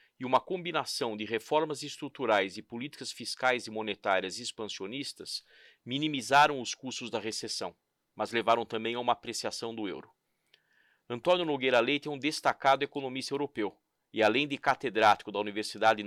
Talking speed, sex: 145 wpm, male